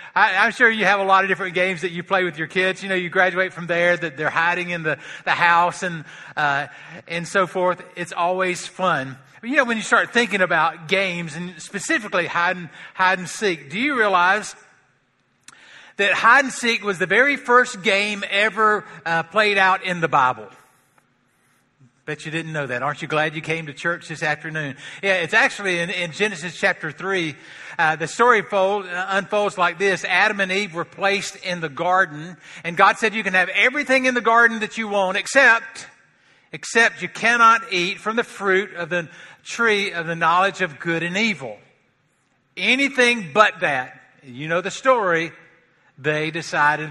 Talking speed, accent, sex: 190 wpm, American, male